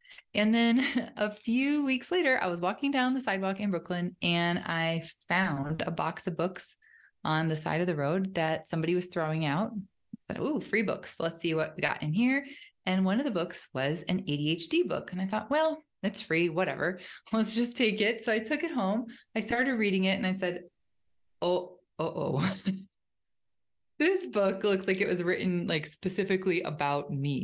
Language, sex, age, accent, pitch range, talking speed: English, female, 20-39, American, 170-230 Hz, 195 wpm